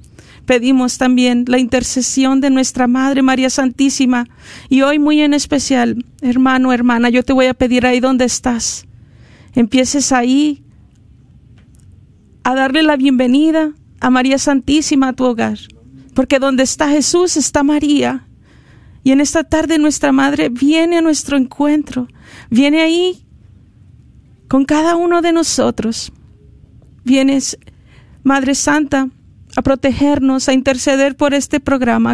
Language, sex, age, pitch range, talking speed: Spanish, female, 40-59, 245-285 Hz, 130 wpm